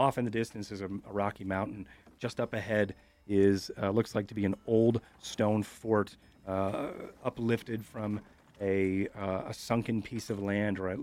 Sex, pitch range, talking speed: male, 95-105 Hz, 185 wpm